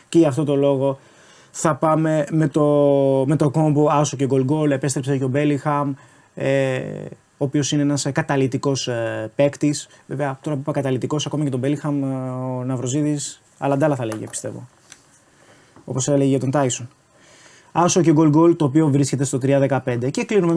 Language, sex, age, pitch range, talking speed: Greek, male, 20-39, 140-170 Hz, 165 wpm